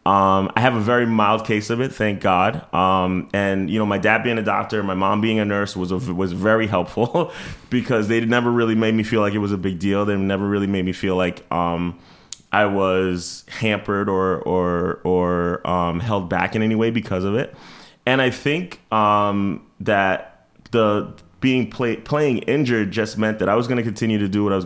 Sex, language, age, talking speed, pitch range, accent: male, English, 20-39, 215 wpm, 95-110 Hz, American